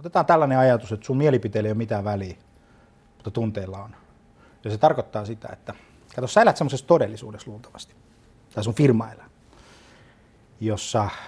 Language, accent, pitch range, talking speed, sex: Finnish, native, 105-140 Hz, 155 wpm, male